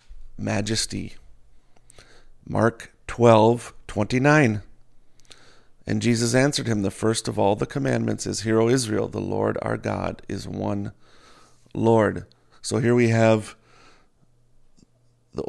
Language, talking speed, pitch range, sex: English, 120 wpm, 105-120 Hz, male